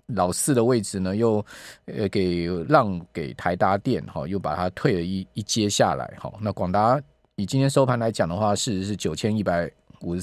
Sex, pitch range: male, 100-135 Hz